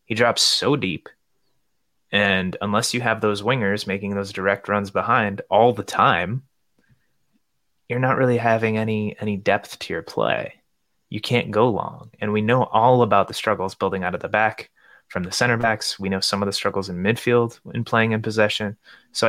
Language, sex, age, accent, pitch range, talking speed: English, male, 20-39, American, 100-125 Hz, 190 wpm